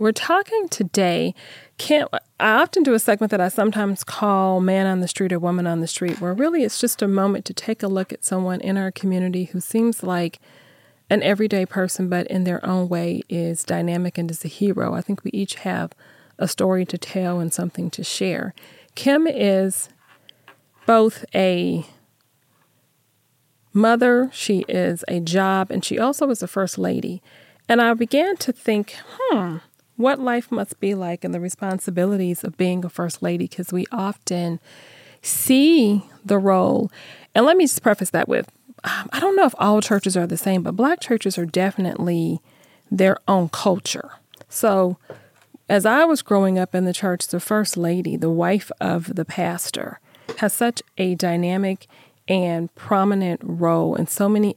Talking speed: 175 wpm